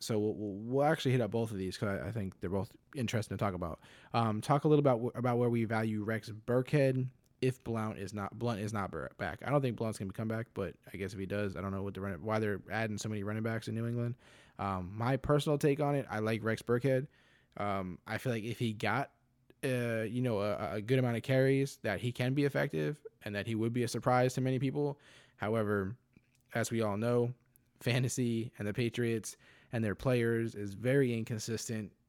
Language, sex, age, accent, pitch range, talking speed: English, male, 20-39, American, 105-125 Hz, 230 wpm